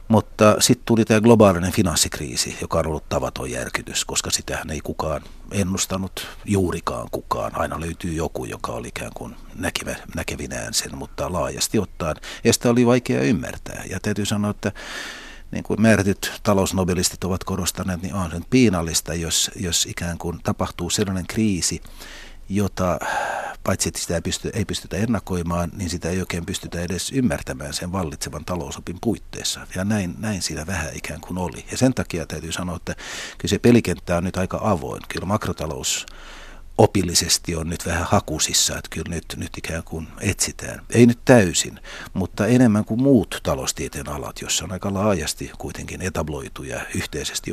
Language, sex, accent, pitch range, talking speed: Finnish, male, native, 80-100 Hz, 160 wpm